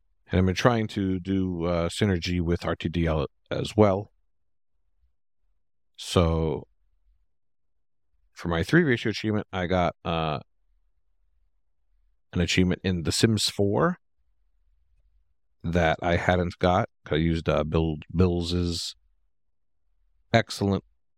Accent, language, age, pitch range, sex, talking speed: American, English, 50-69, 80-95 Hz, male, 110 wpm